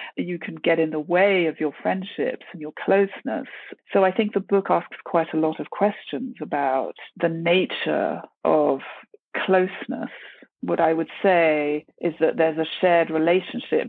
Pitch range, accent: 155-190 Hz, British